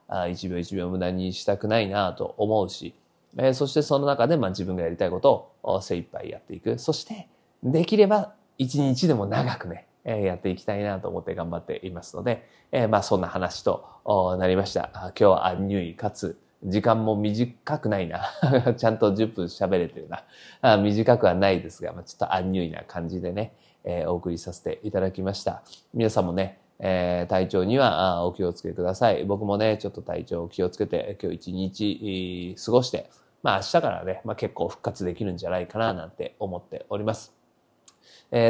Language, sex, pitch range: Japanese, male, 95-120 Hz